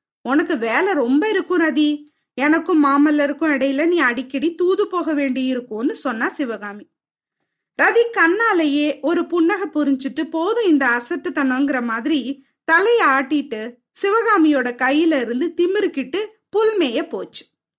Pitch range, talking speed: 275-370 Hz, 110 wpm